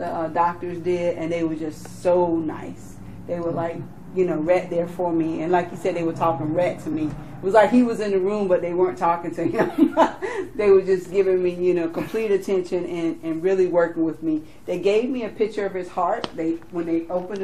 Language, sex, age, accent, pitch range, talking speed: English, female, 40-59, American, 165-200 Hz, 235 wpm